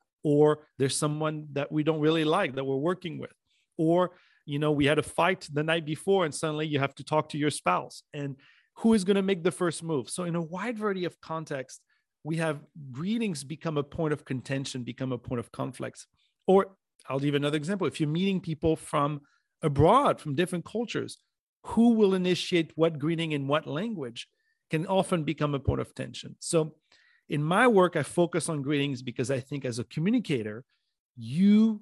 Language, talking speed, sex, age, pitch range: English, 195 wpm, male, 40-59, 140-180 Hz